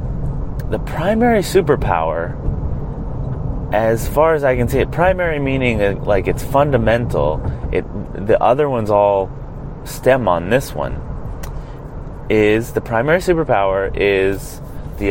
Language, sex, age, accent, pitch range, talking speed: English, male, 30-49, American, 90-130 Hz, 120 wpm